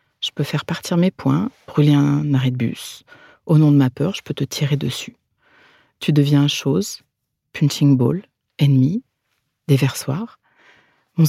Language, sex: French, female